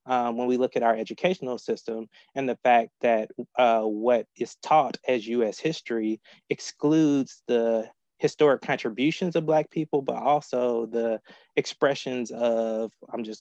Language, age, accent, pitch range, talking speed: English, 20-39, American, 110-125 Hz, 150 wpm